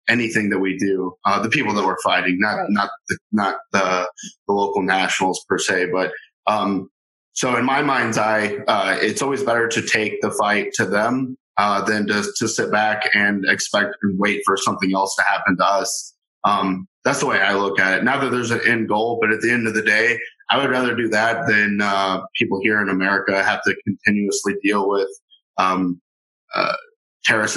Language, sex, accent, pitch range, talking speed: English, male, American, 100-115 Hz, 205 wpm